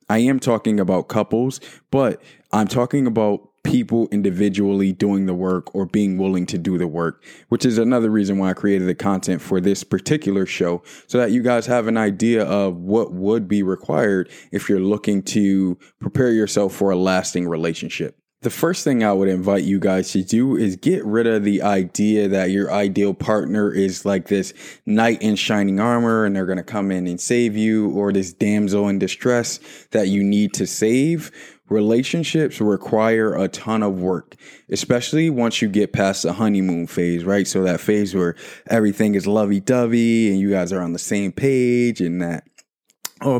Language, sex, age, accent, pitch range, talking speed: English, male, 20-39, American, 95-115 Hz, 190 wpm